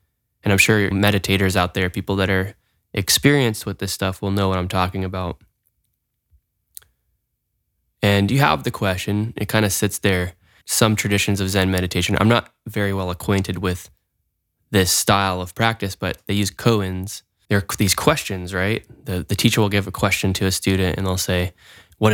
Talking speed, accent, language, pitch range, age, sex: 180 wpm, American, English, 90-110 Hz, 10-29, male